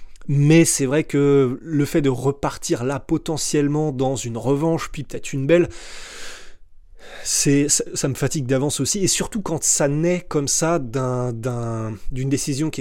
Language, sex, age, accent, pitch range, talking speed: French, male, 20-39, French, 125-155 Hz, 155 wpm